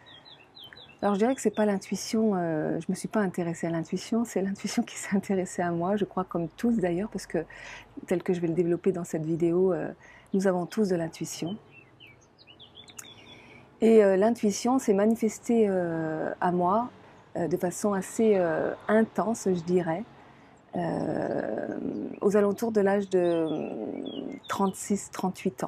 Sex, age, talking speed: female, 40-59, 160 wpm